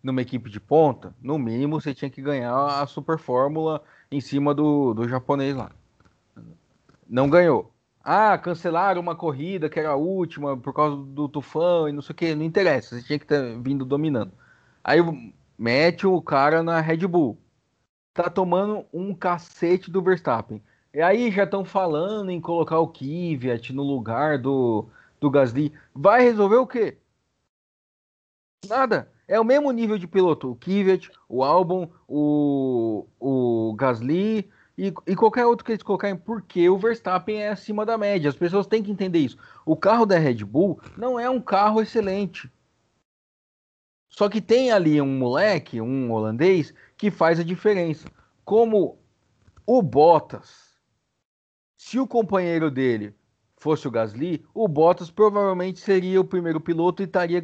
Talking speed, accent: 160 wpm, Brazilian